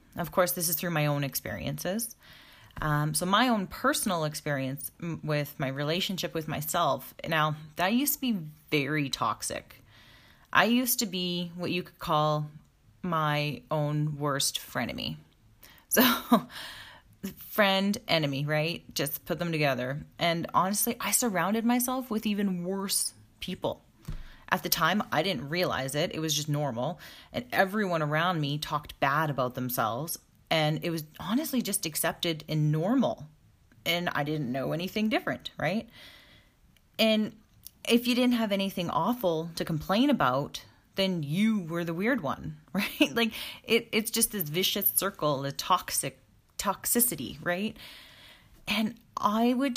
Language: English